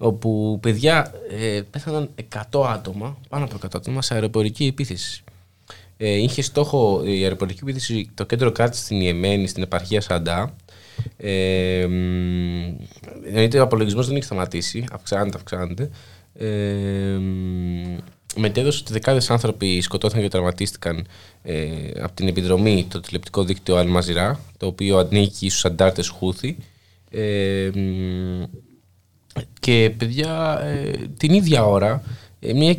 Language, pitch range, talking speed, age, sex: Greek, 95-125 Hz, 110 wpm, 20-39, male